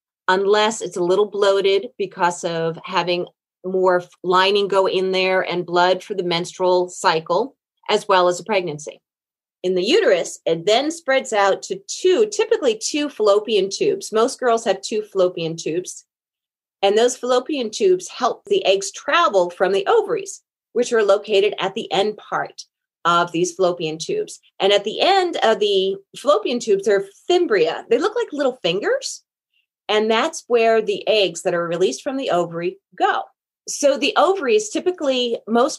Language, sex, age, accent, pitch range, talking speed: English, female, 30-49, American, 185-280 Hz, 165 wpm